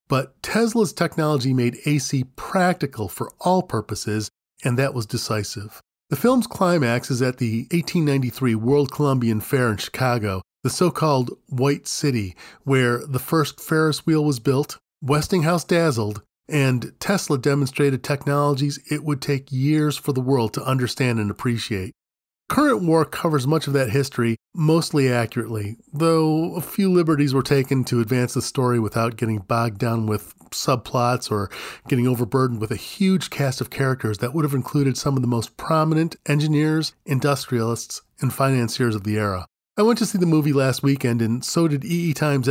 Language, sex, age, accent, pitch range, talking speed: English, male, 40-59, American, 120-155 Hz, 165 wpm